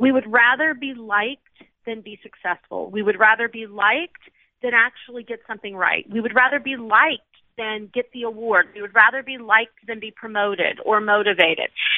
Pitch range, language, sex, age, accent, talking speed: 215-280 Hz, English, female, 40-59, American, 185 wpm